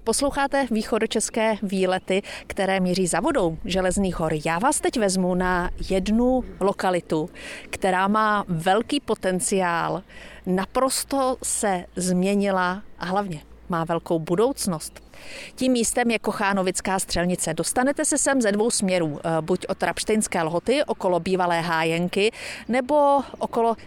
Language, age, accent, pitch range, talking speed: Czech, 40-59, native, 185-240 Hz, 125 wpm